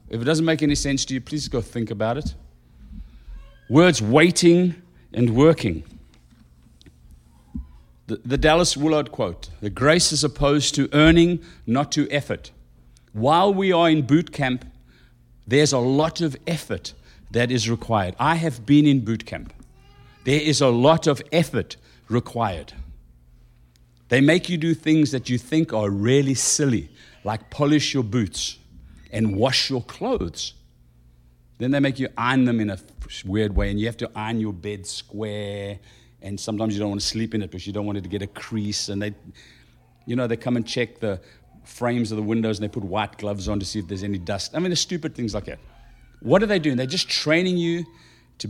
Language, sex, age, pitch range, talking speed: English, male, 60-79, 100-140 Hz, 190 wpm